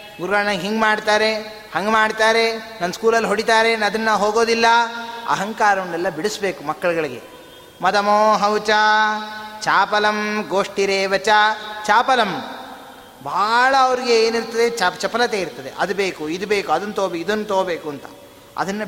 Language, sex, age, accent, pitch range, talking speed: Kannada, male, 30-49, native, 170-215 Hz, 110 wpm